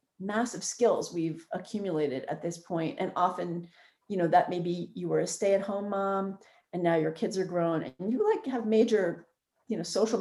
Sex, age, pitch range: female, 40-59, 170-210 Hz